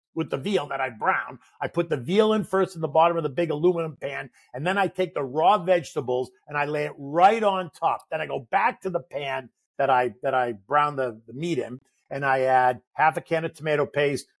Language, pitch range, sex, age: English, 145-185 Hz, male, 50-69